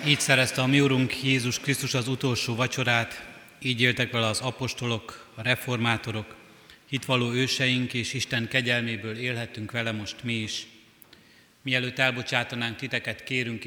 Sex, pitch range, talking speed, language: male, 110-125 Hz, 135 wpm, Hungarian